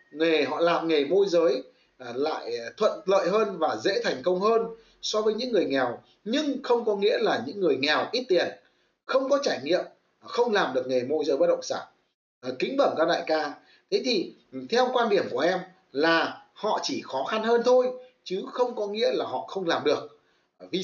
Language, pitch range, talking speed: Vietnamese, 190-260 Hz, 205 wpm